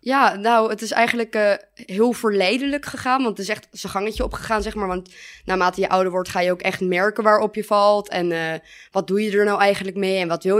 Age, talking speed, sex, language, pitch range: 20-39, 245 wpm, female, Dutch, 180-215 Hz